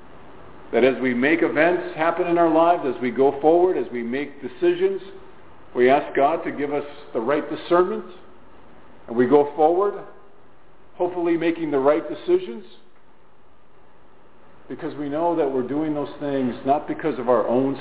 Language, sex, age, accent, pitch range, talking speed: English, male, 50-69, American, 125-155 Hz, 160 wpm